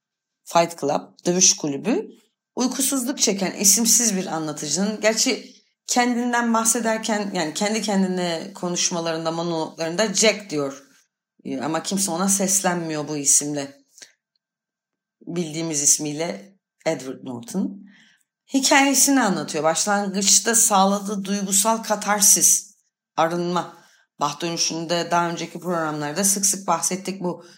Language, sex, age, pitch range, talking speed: Turkish, female, 30-49, 160-215 Hz, 100 wpm